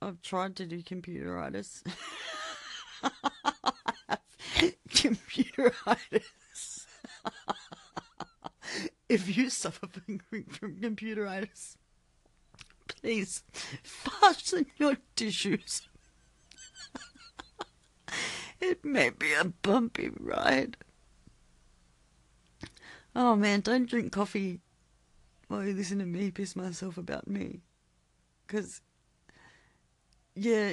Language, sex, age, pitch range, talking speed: English, female, 40-59, 145-220 Hz, 70 wpm